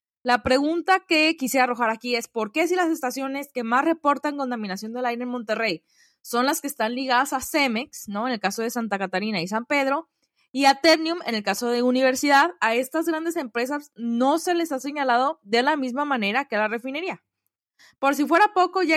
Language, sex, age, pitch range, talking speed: Spanish, female, 20-39, 240-315 Hz, 210 wpm